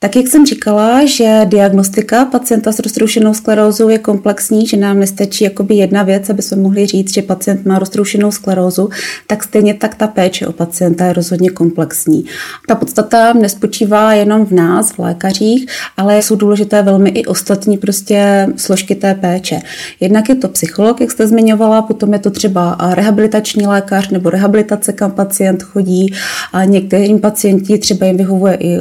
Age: 30-49